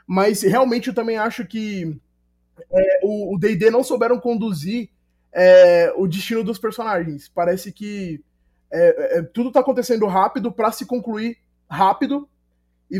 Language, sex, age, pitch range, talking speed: Portuguese, male, 20-39, 180-230 Hz, 145 wpm